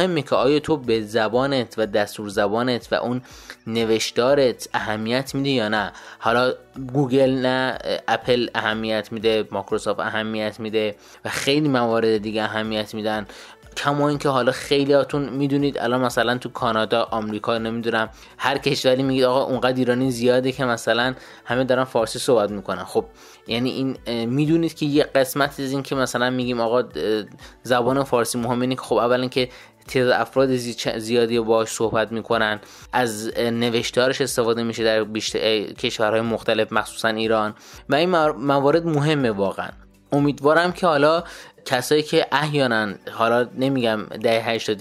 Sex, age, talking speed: male, 20-39, 145 wpm